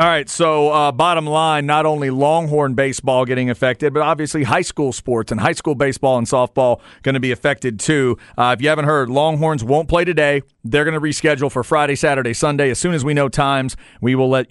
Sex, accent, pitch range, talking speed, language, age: male, American, 115-150 Hz, 225 wpm, English, 40-59